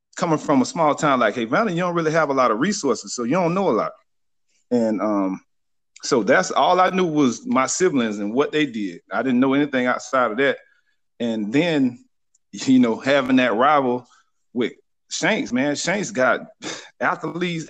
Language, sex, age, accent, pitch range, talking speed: English, male, 40-59, American, 120-175 Hz, 190 wpm